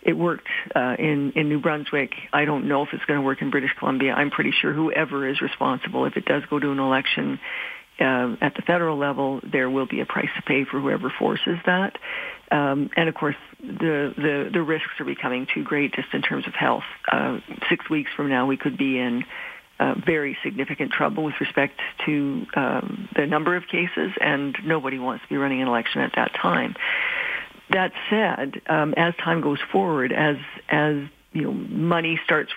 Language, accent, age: English, American, 50-69